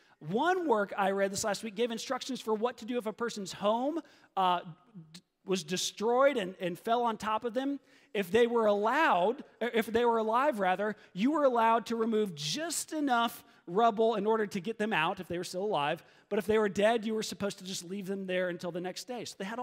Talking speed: 230 wpm